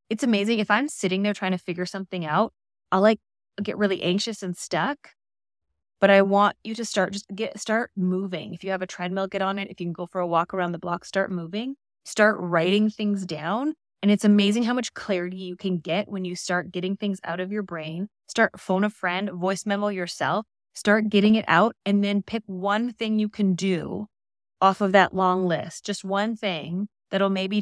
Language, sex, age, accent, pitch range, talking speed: English, female, 20-39, American, 175-205 Hz, 215 wpm